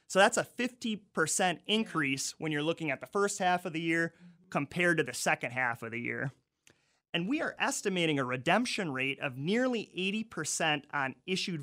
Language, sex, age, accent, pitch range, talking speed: English, male, 30-49, American, 140-185 Hz, 180 wpm